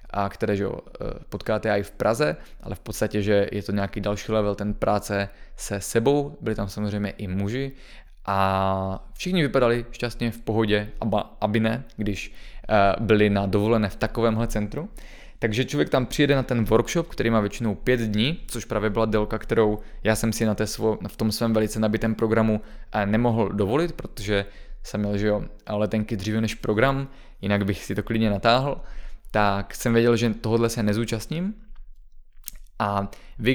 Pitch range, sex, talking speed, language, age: 105-115 Hz, male, 170 wpm, Czech, 20-39